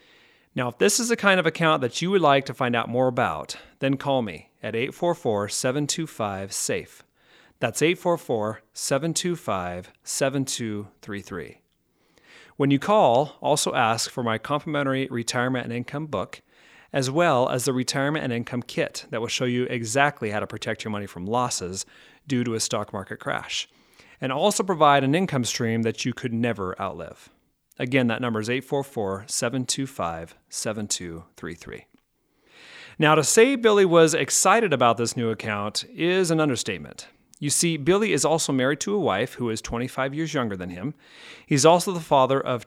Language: English